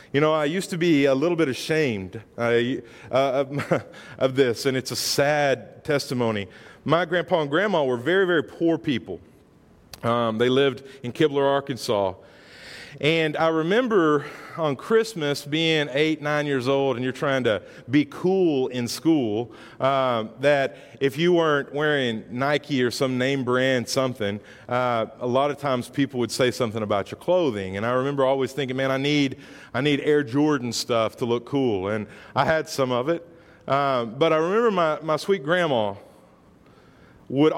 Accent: American